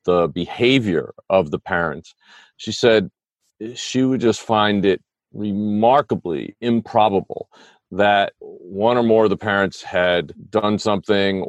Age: 40-59